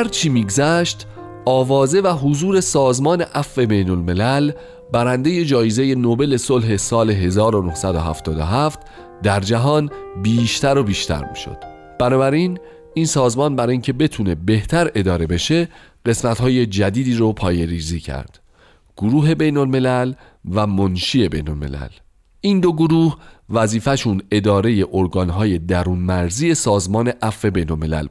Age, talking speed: 40-59, 115 wpm